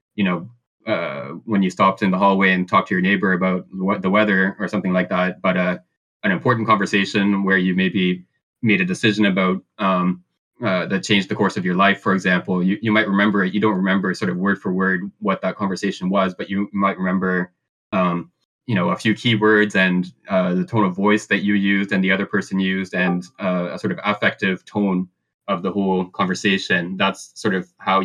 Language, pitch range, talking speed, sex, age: English, 90-105 Hz, 215 wpm, male, 20-39